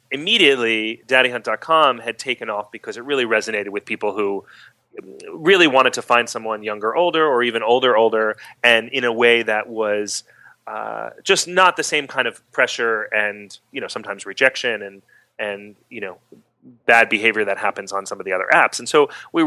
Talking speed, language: 180 wpm, English